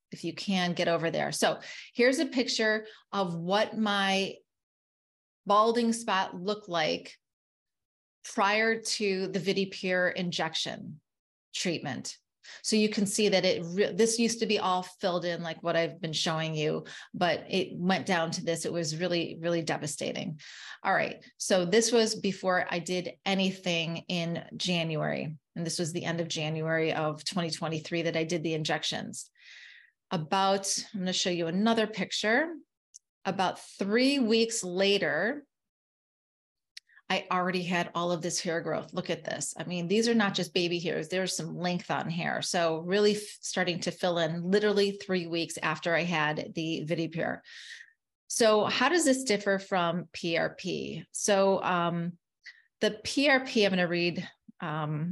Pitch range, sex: 170-210 Hz, female